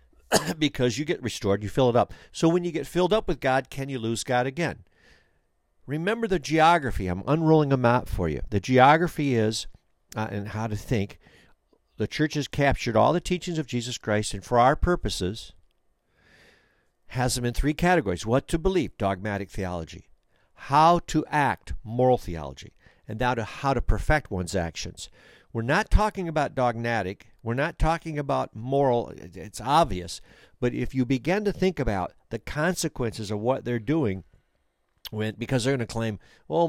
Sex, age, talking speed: male, 50-69, 175 wpm